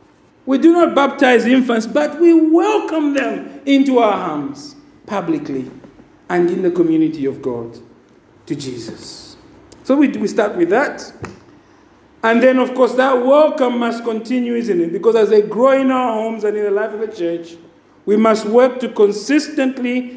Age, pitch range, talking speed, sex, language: 50-69, 225-285 Hz, 165 wpm, male, English